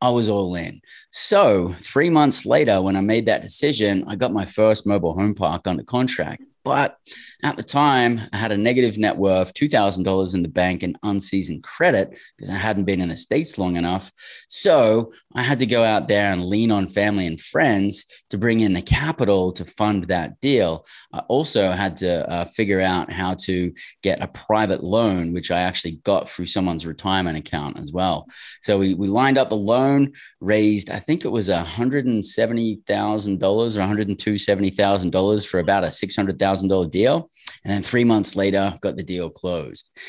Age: 20-39